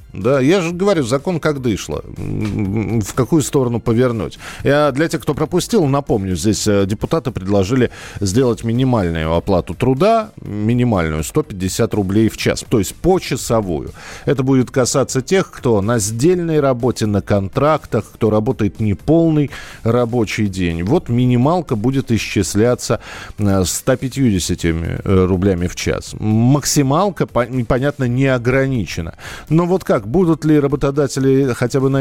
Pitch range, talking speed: 105-140 Hz, 125 wpm